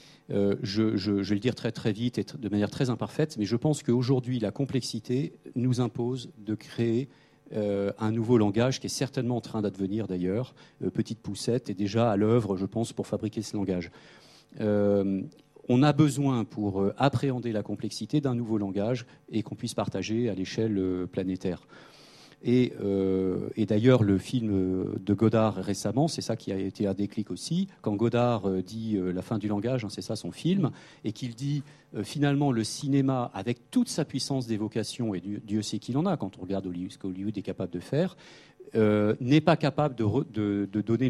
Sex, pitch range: male, 100-130 Hz